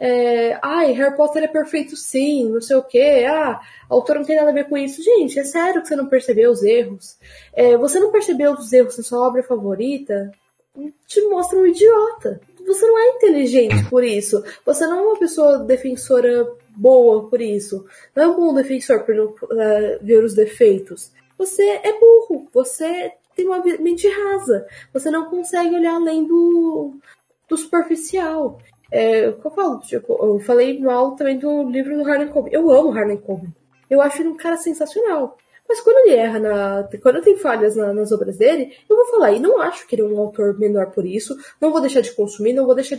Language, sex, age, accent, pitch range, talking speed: Portuguese, female, 10-29, Brazilian, 230-355 Hz, 190 wpm